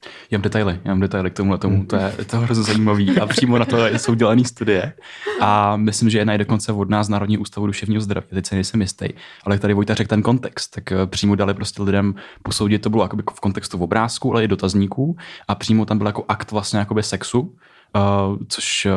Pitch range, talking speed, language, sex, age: 100-110 Hz, 220 wpm, Czech, male, 20-39